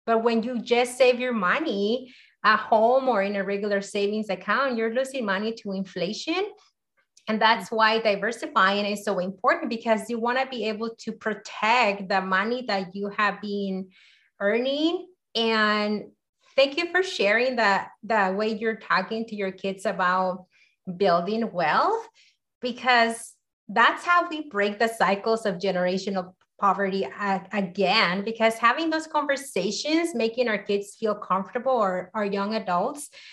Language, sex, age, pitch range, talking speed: English, female, 30-49, 195-245 Hz, 150 wpm